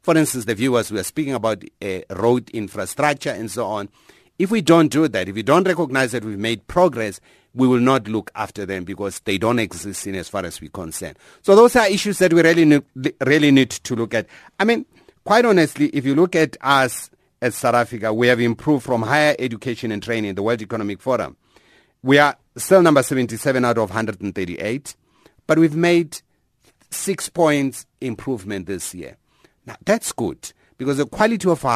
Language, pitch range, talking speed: English, 110-150 Hz, 195 wpm